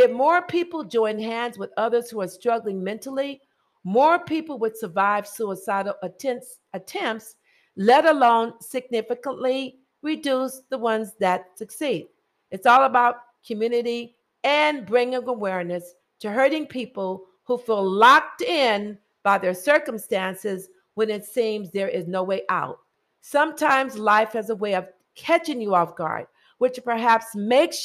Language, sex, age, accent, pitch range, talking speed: English, female, 50-69, American, 200-260 Hz, 140 wpm